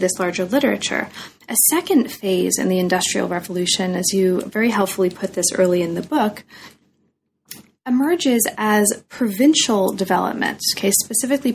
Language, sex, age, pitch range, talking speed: English, female, 30-49, 185-230 Hz, 130 wpm